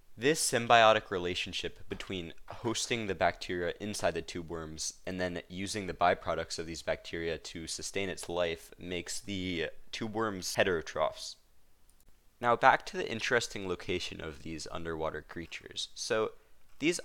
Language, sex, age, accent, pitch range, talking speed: English, male, 20-39, American, 85-110 Hz, 140 wpm